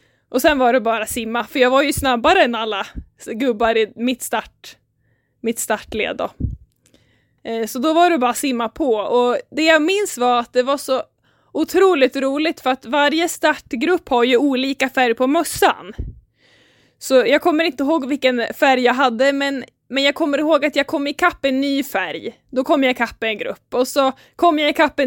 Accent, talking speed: Swedish, 195 wpm